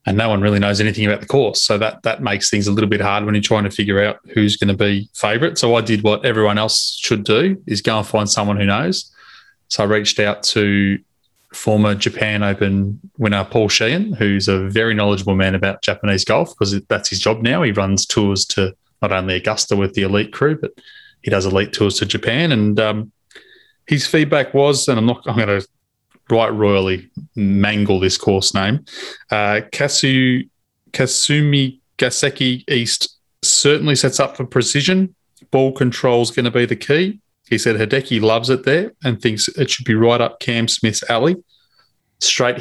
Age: 20-39